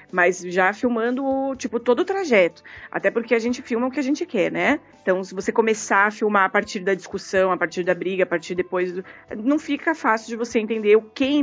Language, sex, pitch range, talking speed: Portuguese, female, 190-260 Hz, 220 wpm